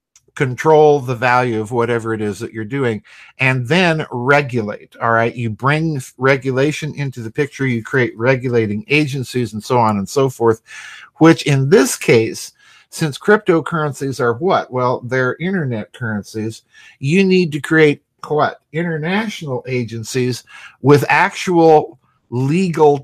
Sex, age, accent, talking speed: male, 50-69, American, 140 wpm